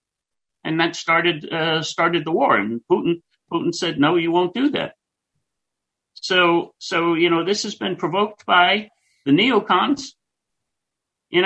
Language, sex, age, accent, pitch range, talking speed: English, male, 60-79, American, 140-205 Hz, 145 wpm